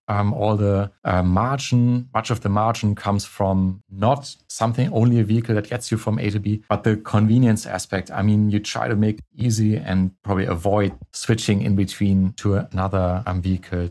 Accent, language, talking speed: German, English, 195 wpm